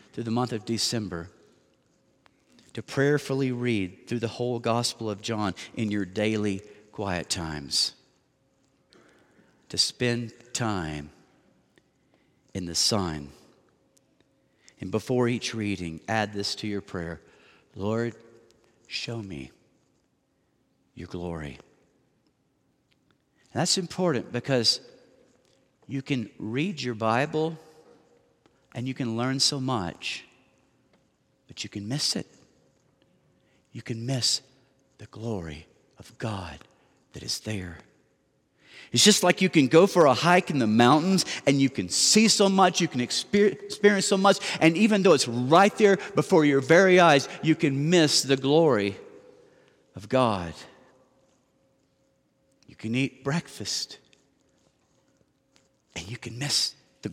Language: English